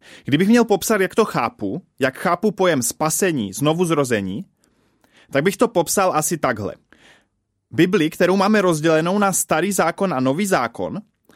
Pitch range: 140-180 Hz